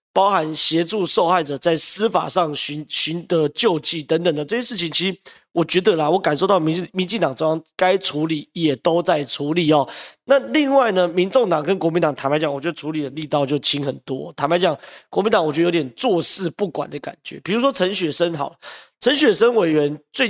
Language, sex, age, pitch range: Chinese, male, 30-49, 150-190 Hz